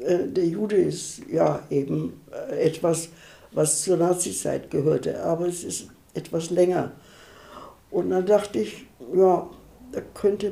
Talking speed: 125 wpm